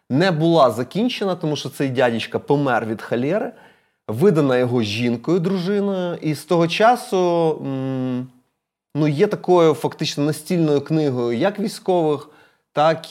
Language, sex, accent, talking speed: Ukrainian, male, native, 130 wpm